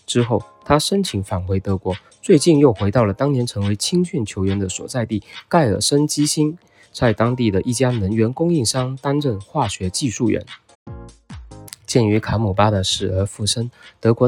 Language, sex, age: Chinese, male, 20-39